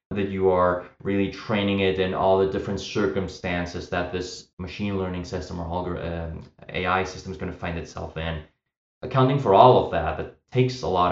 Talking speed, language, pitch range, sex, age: 185 wpm, English, 90-105 Hz, male, 20-39